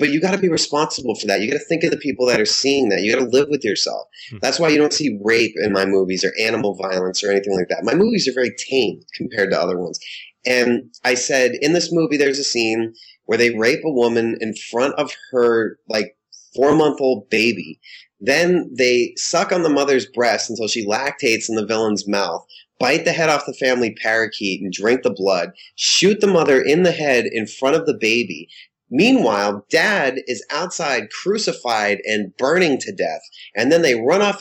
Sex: male